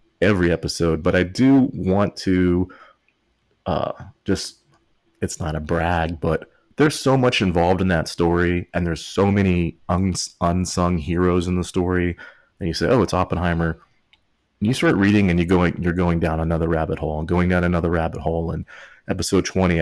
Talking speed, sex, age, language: 175 wpm, male, 30-49, English